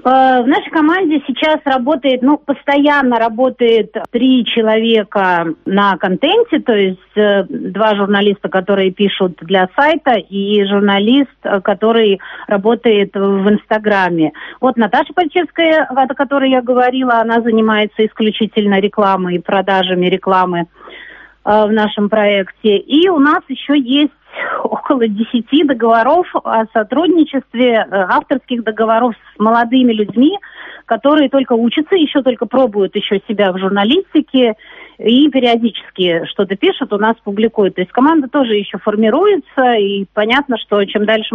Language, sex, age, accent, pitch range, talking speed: Russian, female, 40-59, native, 210-275 Hz, 125 wpm